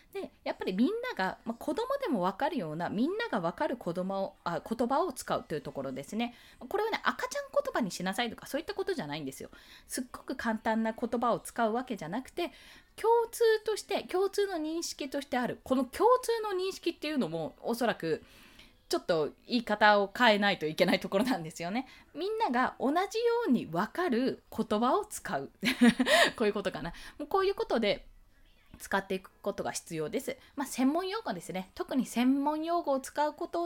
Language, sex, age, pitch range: Japanese, female, 20-39, 200-335 Hz